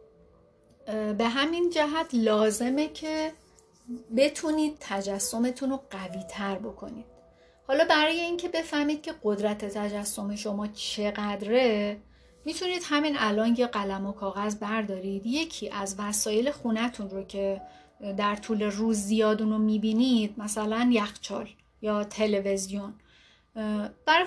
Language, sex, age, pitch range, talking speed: Persian, female, 40-59, 205-255 Hz, 110 wpm